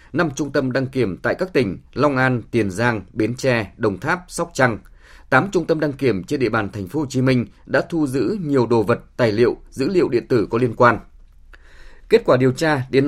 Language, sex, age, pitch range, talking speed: Vietnamese, male, 20-39, 110-145 Hz, 235 wpm